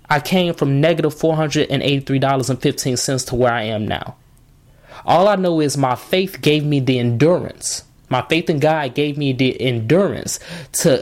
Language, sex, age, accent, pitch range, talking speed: English, male, 20-39, American, 130-160 Hz, 160 wpm